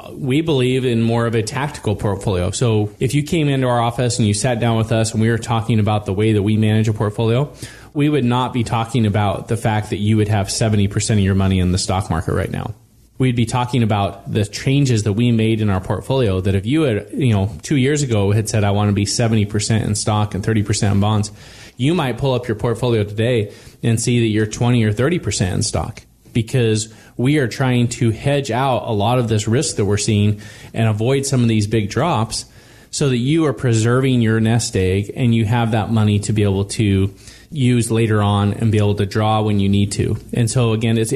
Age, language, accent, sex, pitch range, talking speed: 20-39, English, American, male, 105-125 Hz, 235 wpm